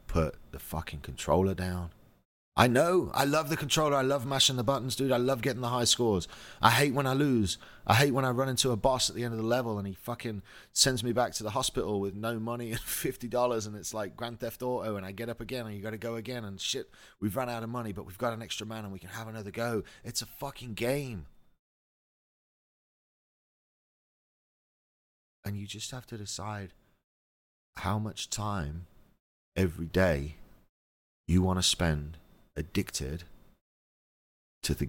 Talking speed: 195 wpm